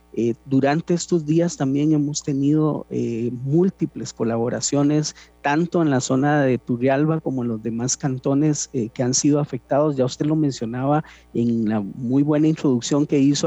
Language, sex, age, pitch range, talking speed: Spanish, male, 40-59, 125-160 Hz, 165 wpm